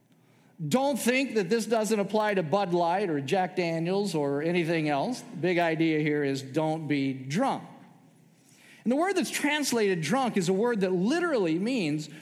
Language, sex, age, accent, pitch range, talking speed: English, male, 50-69, American, 175-240 Hz, 170 wpm